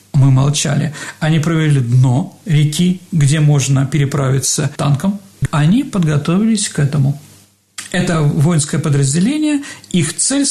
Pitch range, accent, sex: 145-195 Hz, native, male